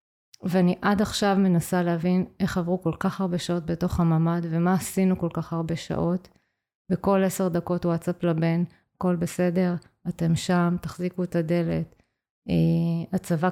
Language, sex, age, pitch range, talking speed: Hebrew, female, 20-39, 165-190 Hz, 140 wpm